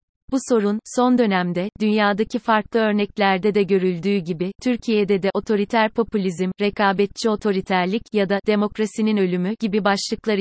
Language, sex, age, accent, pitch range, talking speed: Turkish, female, 30-49, native, 190-220 Hz, 125 wpm